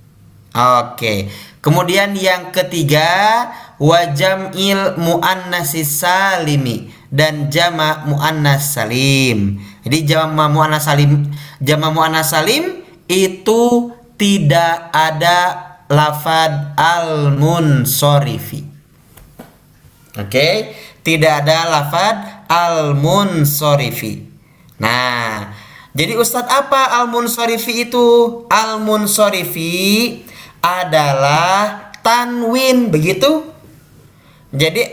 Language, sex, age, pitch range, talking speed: Malay, male, 20-39, 145-200 Hz, 70 wpm